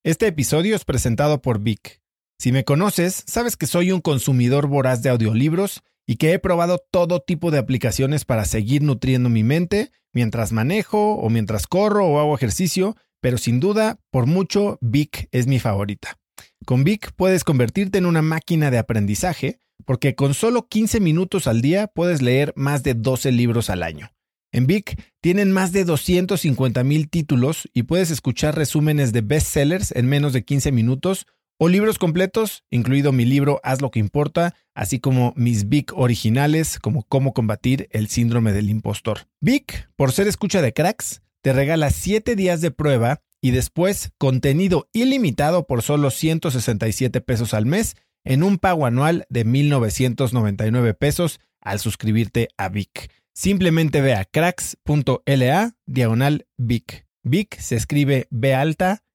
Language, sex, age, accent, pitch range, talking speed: Spanish, male, 40-59, Mexican, 120-175 Hz, 155 wpm